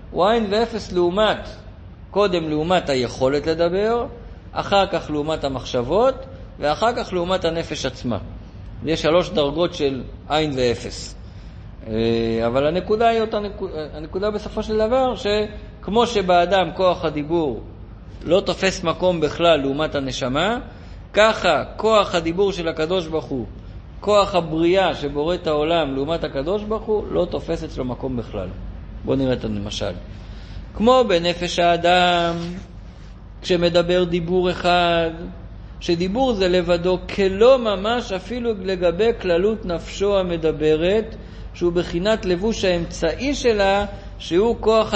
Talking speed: 120 wpm